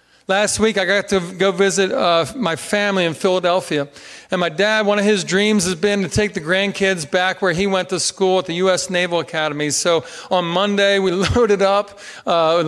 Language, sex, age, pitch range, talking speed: English, male, 40-59, 185-220 Hz, 210 wpm